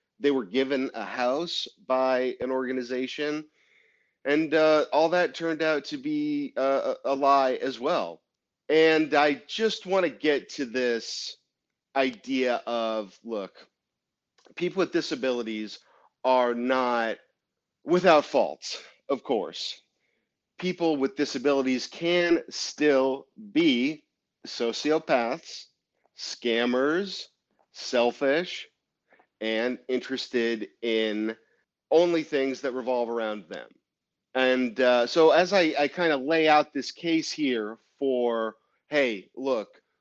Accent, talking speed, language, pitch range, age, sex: American, 110 wpm, English, 120-160 Hz, 40-59, male